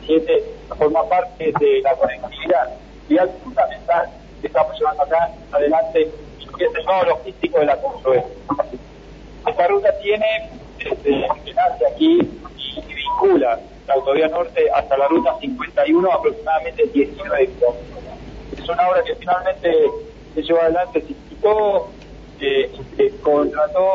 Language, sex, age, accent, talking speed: Spanish, male, 40-59, Argentinian, 130 wpm